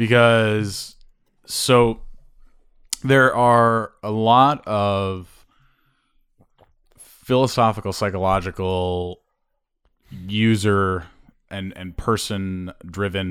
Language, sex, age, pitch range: English, male, 20-39, 90-110 Hz